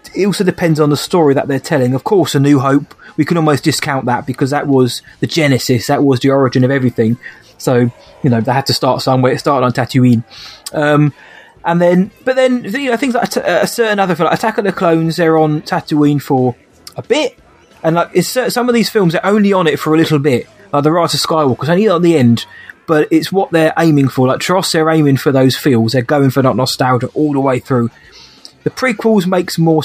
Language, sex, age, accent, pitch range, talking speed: English, male, 20-39, British, 130-160 Hz, 235 wpm